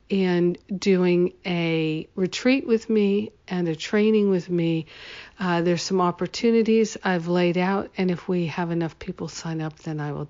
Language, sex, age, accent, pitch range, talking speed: English, female, 50-69, American, 165-190 Hz, 170 wpm